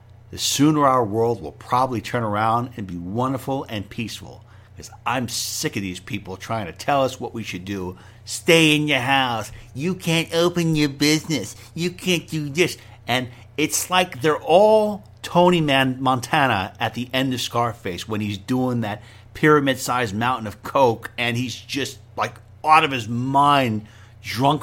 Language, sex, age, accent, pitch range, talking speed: English, male, 50-69, American, 105-135 Hz, 170 wpm